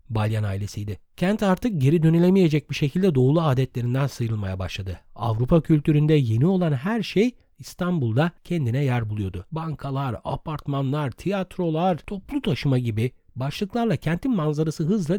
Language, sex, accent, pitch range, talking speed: Turkish, male, native, 120-185 Hz, 125 wpm